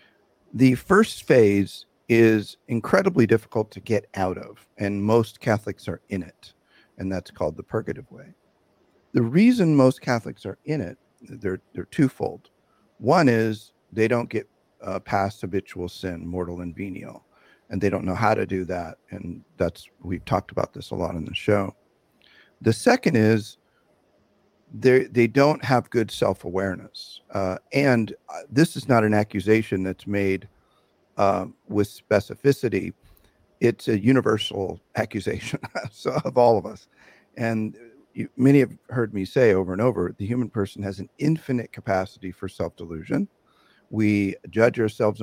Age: 50-69